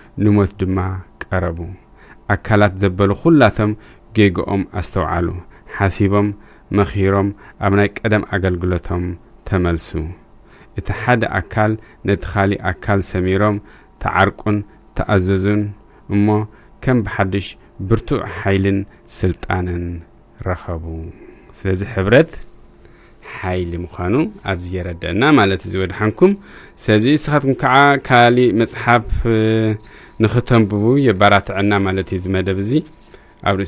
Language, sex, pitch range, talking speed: English, male, 95-110 Hz, 95 wpm